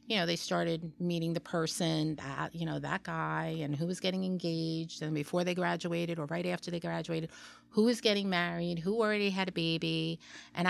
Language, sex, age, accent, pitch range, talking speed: English, female, 30-49, American, 170-230 Hz, 200 wpm